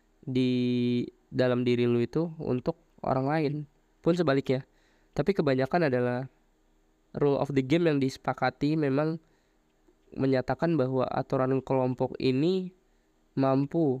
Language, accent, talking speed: Indonesian, native, 110 wpm